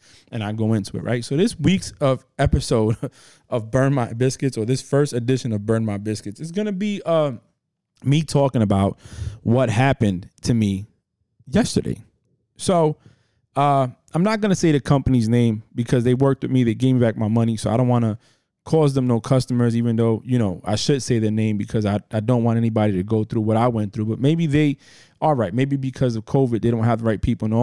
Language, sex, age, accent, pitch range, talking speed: English, male, 20-39, American, 110-145 Hz, 225 wpm